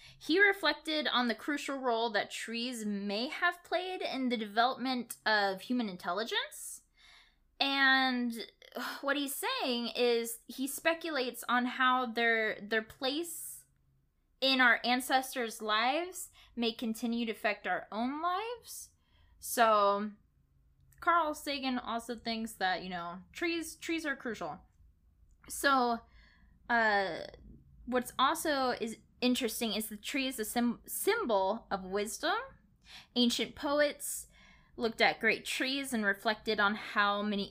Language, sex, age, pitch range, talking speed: English, female, 10-29, 215-280 Hz, 125 wpm